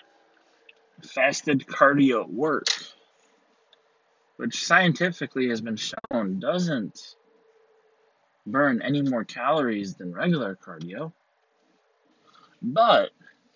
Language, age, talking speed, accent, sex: English, 30-49, 75 wpm, American, male